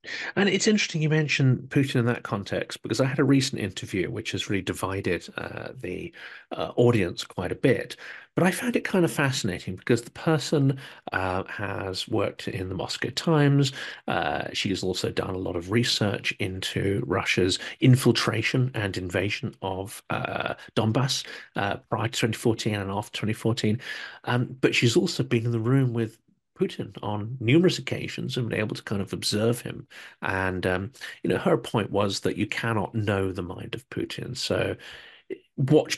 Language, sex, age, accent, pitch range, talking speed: English, male, 40-59, British, 105-140 Hz, 175 wpm